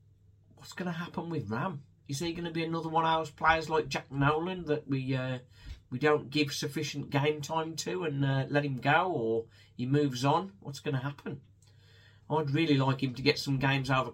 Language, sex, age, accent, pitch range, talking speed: English, male, 40-59, British, 110-155 Hz, 215 wpm